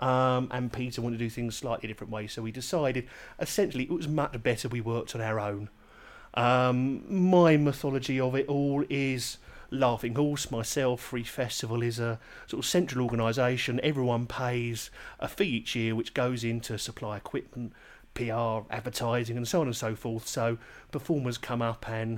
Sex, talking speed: male, 180 wpm